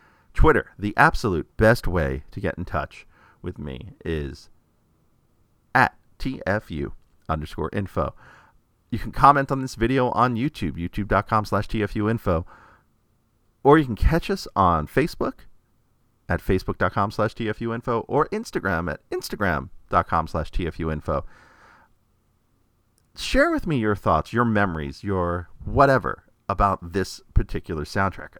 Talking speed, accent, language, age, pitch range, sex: 125 wpm, American, English, 40-59, 85-115 Hz, male